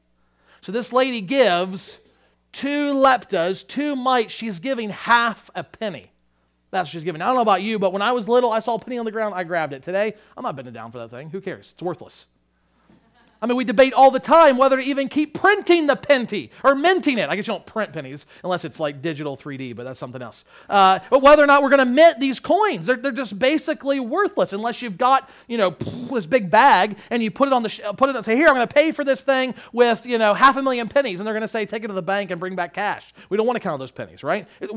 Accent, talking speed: American, 265 wpm